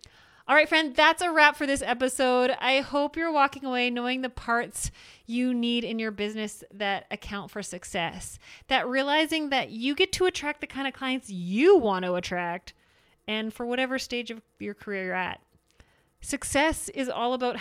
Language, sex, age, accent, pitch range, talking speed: English, female, 30-49, American, 200-260 Hz, 185 wpm